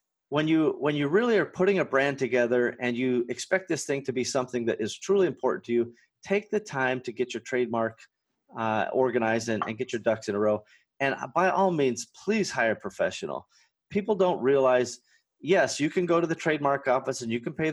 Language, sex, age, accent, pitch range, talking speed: English, male, 30-49, American, 120-165 Hz, 215 wpm